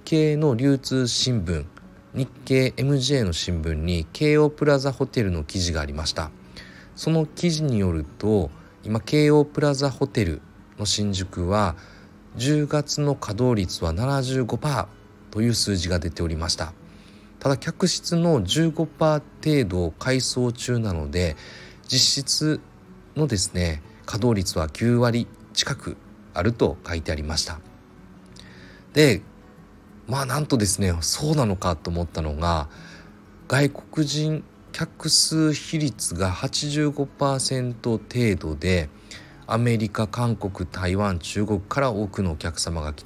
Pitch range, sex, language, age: 90-135 Hz, male, Japanese, 40-59